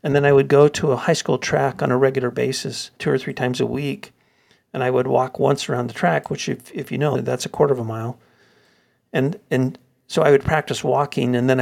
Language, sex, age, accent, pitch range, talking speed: English, male, 50-69, American, 125-140 Hz, 250 wpm